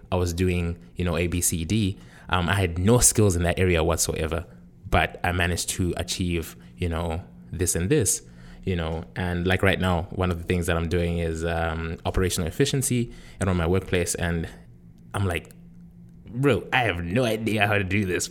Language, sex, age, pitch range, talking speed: English, male, 20-39, 85-110 Hz, 200 wpm